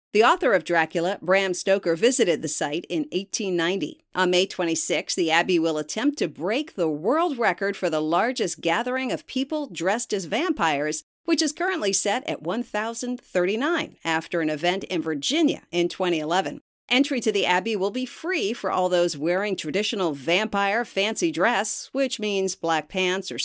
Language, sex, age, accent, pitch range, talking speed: English, female, 50-69, American, 180-280 Hz, 165 wpm